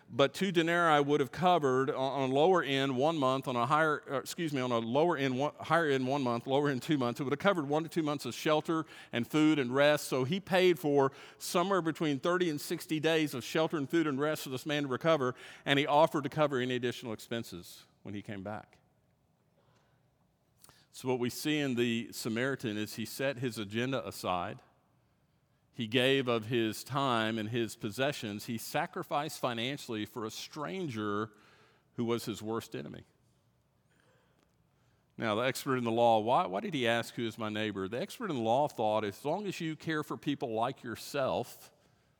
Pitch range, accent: 115-155 Hz, American